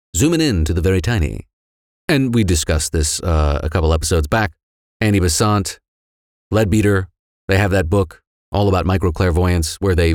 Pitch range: 85-115 Hz